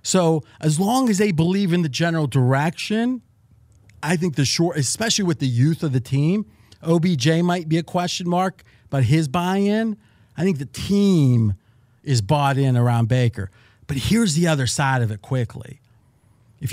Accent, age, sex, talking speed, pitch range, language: American, 40-59, male, 170 wpm, 115-160 Hz, English